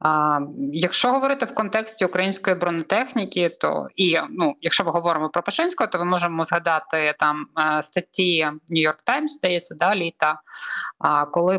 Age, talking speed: 20-39, 140 wpm